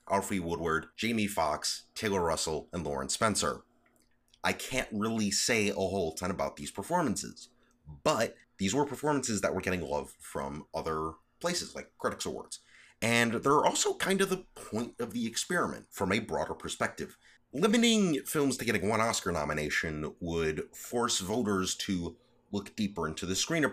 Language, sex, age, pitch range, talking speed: English, male, 30-49, 80-110 Hz, 160 wpm